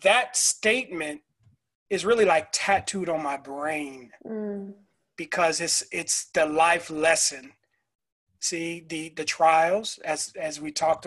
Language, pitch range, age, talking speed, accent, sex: English, 155-190 Hz, 30-49, 125 wpm, American, male